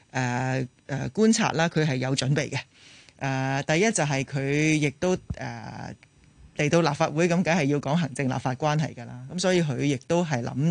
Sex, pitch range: male, 130-170 Hz